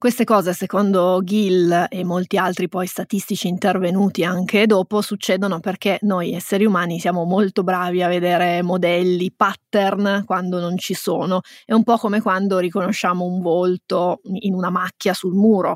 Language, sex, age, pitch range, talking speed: Italian, female, 20-39, 190-220 Hz, 155 wpm